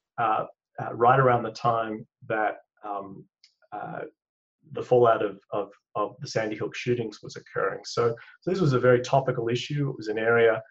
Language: English